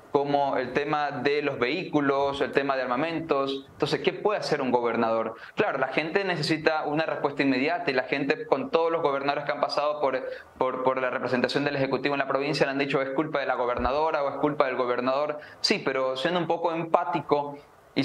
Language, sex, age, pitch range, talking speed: English, male, 20-39, 130-150 Hz, 210 wpm